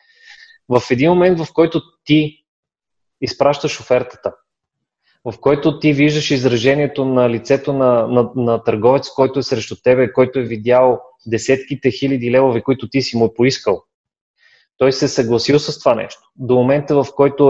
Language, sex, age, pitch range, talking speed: Bulgarian, male, 20-39, 120-140 Hz, 150 wpm